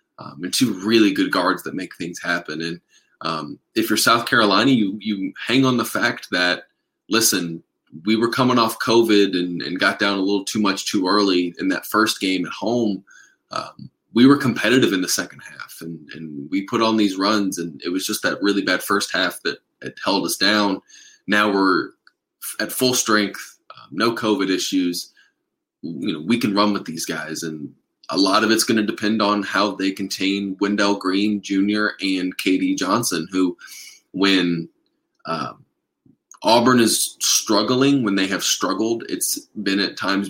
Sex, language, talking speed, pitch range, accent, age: male, English, 180 wpm, 90-110 Hz, American, 20-39